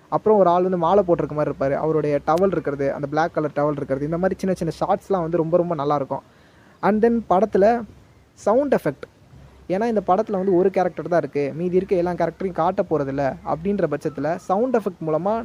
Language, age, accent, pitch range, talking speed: Tamil, 20-39, native, 155-195 Hz, 185 wpm